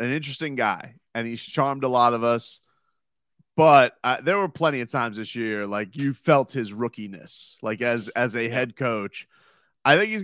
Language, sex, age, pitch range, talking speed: English, male, 30-49, 110-140 Hz, 195 wpm